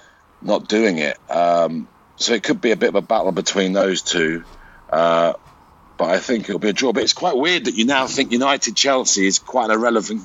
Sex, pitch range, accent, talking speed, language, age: male, 85-120 Hz, British, 215 wpm, English, 50-69